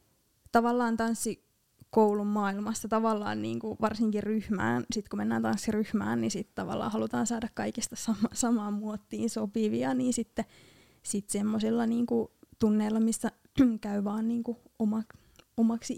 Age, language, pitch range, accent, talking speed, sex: 20-39, Finnish, 200-235 Hz, native, 115 wpm, female